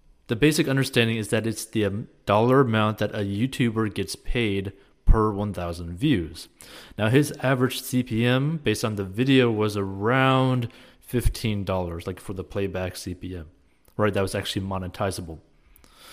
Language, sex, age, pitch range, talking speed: English, male, 30-49, 95-120 Hz, 140 wpm